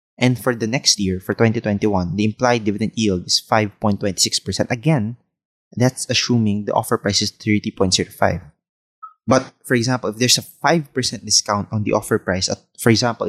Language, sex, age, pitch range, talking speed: English, male, 20-39, 100-120 Hz, 165 wpm